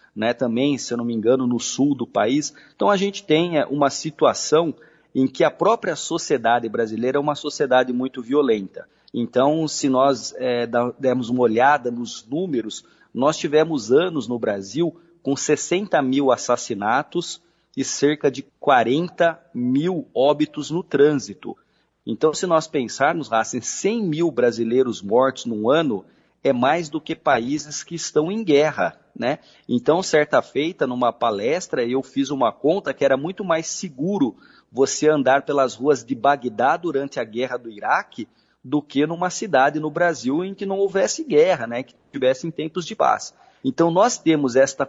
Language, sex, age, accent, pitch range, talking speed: Portuguese, male, 40-59, Brazilian, 125-160 Hz, 160 wpm